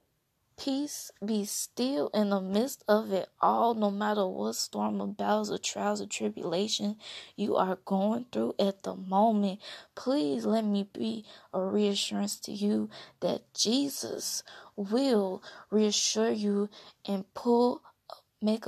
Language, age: English, 20-39